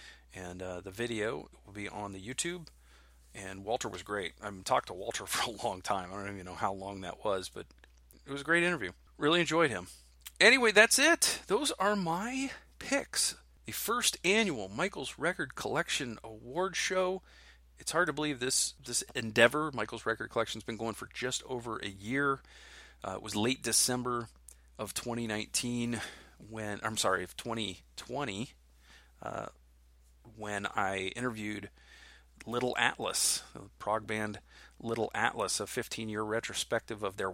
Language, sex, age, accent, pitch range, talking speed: English, male, 40-59, American, 100-140 Hz, 160 wpm